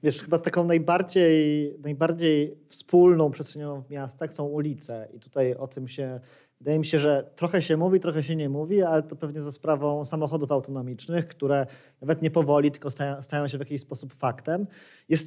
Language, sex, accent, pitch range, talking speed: Polish, male, native, 135-160 Hz, 185 wpm